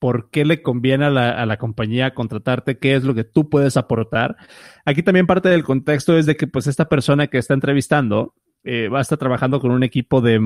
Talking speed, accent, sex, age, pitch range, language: 225 wpm, Mexican, male, 30-49, 120-145 Hz, Spanish